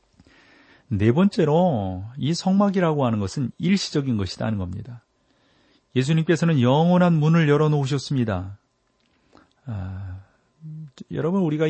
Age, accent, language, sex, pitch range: 40-59, native, Korean, male, 110-145 Hz